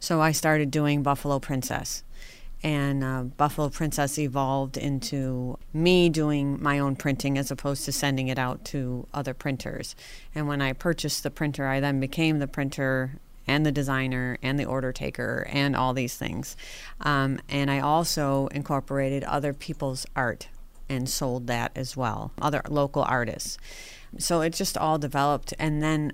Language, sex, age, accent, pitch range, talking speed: English, female, 40-59, American, 130-150 Hz, 165 wpm